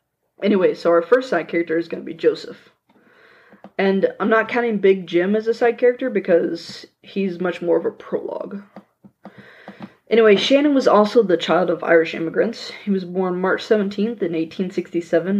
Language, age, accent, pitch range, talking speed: English, 20-39, American, 180-265 Hz, 170 wpm